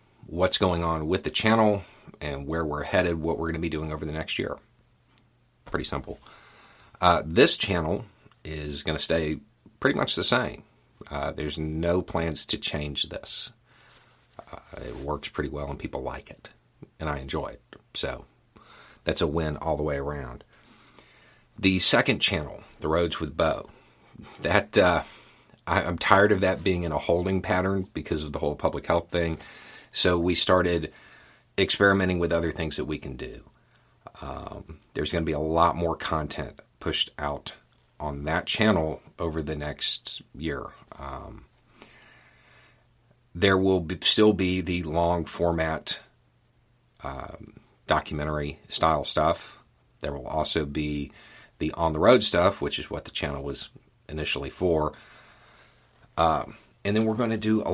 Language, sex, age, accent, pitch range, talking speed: English, male, 40-59, American, 75-95 Hz, 155 wpm